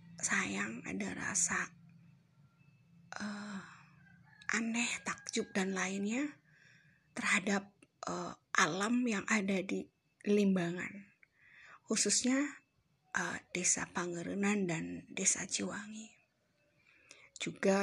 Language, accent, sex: Indonesian, native, female